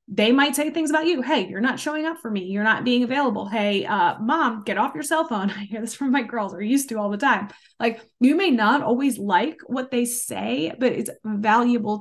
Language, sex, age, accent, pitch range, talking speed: English, female, 20-39, American, 200-250 Hz, 245 wpm